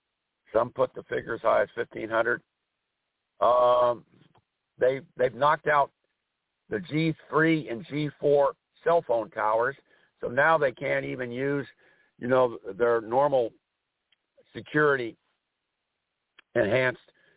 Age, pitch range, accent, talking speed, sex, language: 60-79, 120-150 Hz, American, 115 wpm, male, English